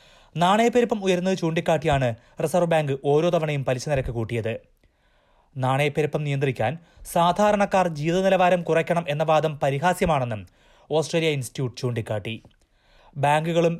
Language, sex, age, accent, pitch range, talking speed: Malayalam, male, 20-39, native, 130-175 Hz, 95 wpm